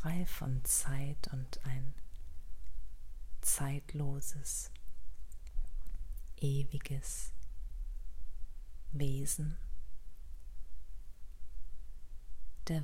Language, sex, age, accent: German, female, 40-59, German